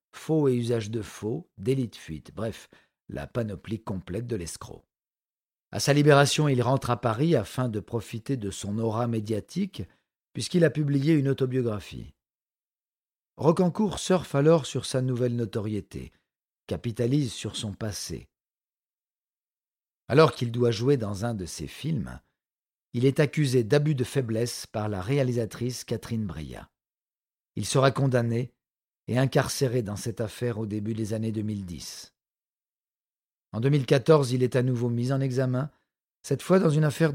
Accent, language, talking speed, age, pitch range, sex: French, French, 145 wpm, 50-69, 100-135 Hz, male